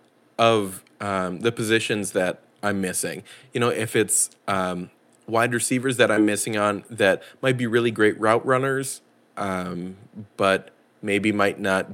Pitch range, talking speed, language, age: 95-125 Hz, 150 wpm, English, 20-39